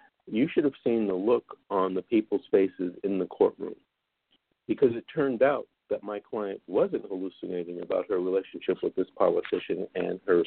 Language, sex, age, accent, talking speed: English, male, 50-69, American, 170 wpm